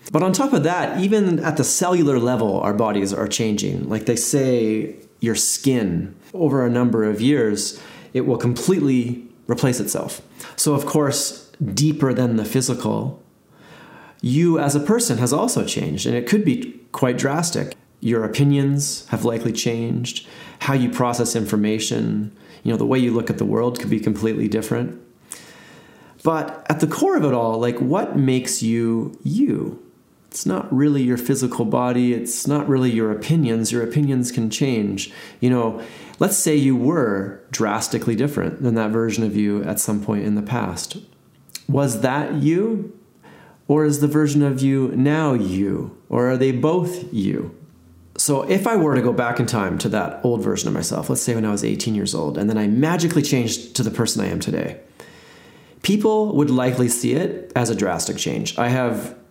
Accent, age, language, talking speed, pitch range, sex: American, 30-49, English, 180 wpm, 115-145 Hz, male